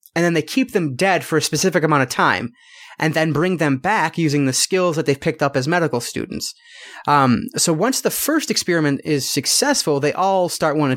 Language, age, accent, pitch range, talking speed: English, 30-49, American, 145-195 Hz, 215 wpm